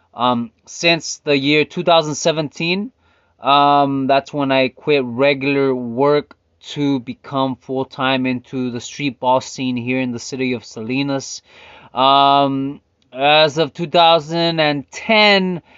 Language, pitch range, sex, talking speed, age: English, 130-155 Hz, male, 115 wpm, 20-39